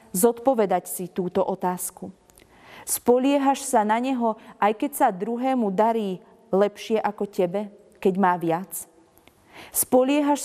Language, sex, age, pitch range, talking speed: Slovak, female, 30-49, 185-230 Hz, 115 wpm